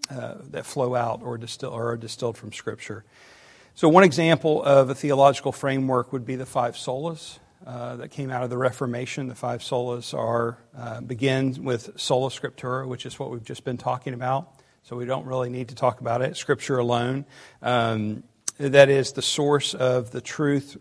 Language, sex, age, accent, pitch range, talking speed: English, male, 50-69, American, 125-145 Hz, 190 wpm